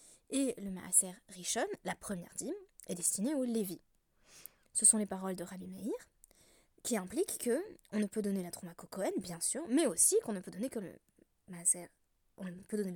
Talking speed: 205 wpm